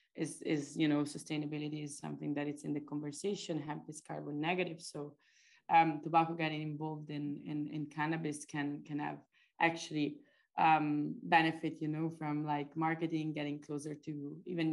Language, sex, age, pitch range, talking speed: English, female, 20-39, 150-170 Hz, 165 wpm